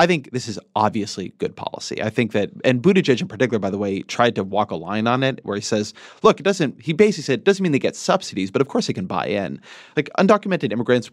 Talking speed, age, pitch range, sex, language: 265 wpm, 30-49, 105-135 Hz, male, English